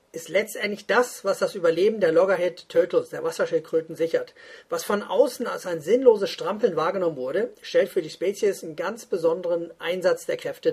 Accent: German